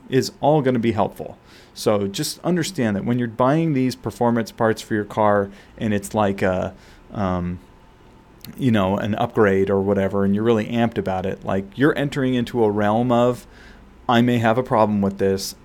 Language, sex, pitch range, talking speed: English, male, 100-120 Hz, 190 wpm